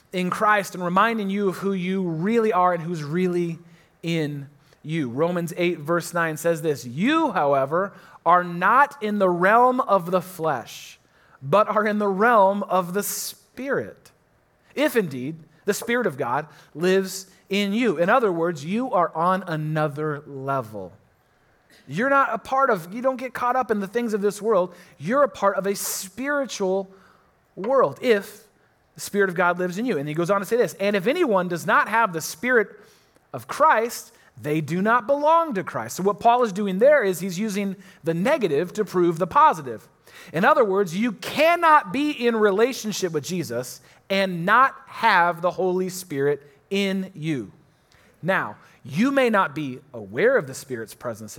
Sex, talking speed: male, 180 wpm